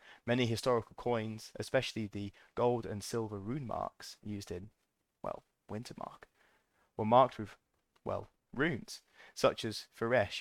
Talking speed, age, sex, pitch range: 135 wpm, 20-39, male, 100-120 Hz